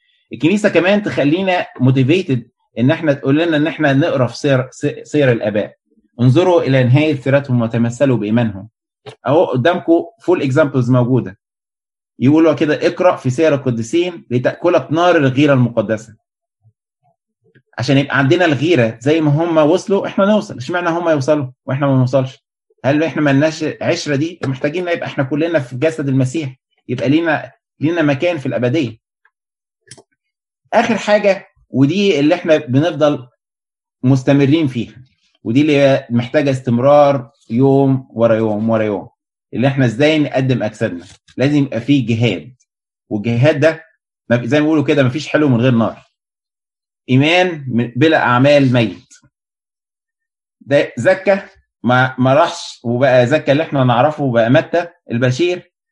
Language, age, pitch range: Arabic, 20-39, 125-165 Hz